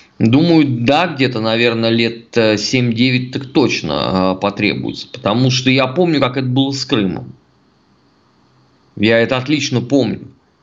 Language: Russian